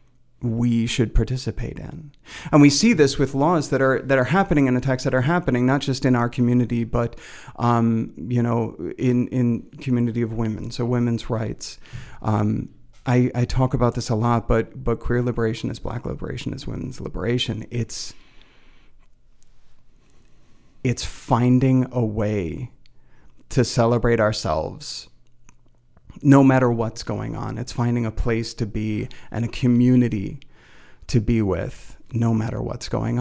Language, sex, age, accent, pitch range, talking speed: English, male, 40-59, American, 115-130 Hz, 150 wpm